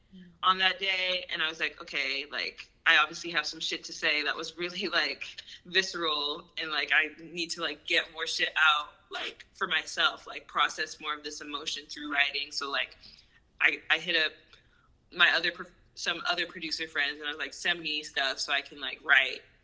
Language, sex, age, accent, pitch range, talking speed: English, female, 20-39, American, 150-175 Hz, 200 wpm